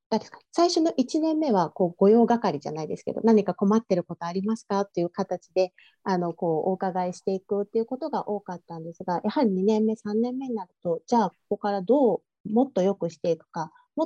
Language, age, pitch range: Japanese, 40-59, 175-240 Hz